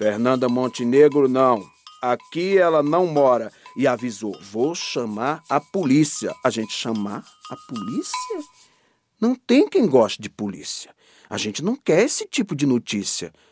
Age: 50-69